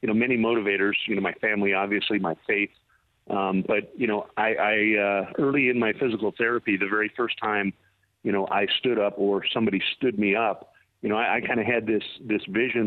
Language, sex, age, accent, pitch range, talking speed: English, male, 40-59, American, 100-115 Hz, 215 wpm